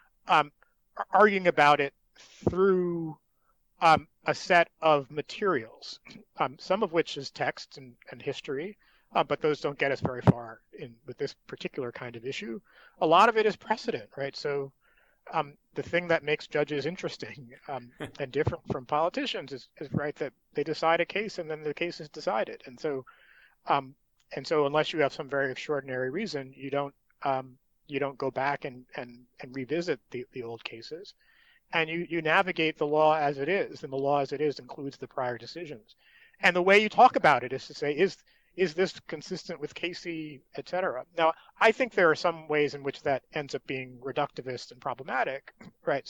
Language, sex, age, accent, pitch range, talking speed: English, male, 40-59, American, 140-175 Hz, 195 wpm